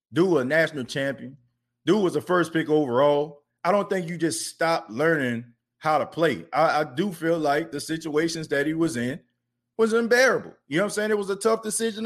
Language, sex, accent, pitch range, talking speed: English, male, American, 125-180 Hz, 215 wpm